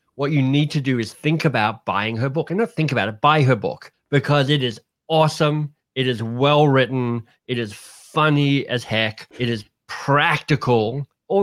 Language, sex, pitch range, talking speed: English, male, 115-145 Hz, 185 wpm